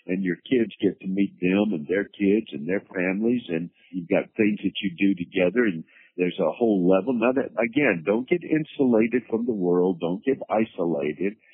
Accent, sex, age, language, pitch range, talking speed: American, male, 60-79, English, 90-115 Hz, 200 wpm